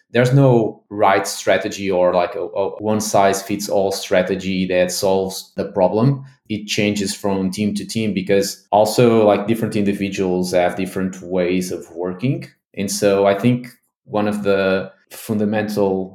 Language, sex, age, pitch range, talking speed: English, male, 20-39, 95-105 Hz, 150 wpm